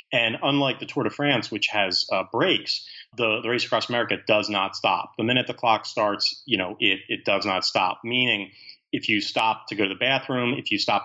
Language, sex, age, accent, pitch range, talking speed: English, male, 30-49, American, 100-130 Hz, 230 wpm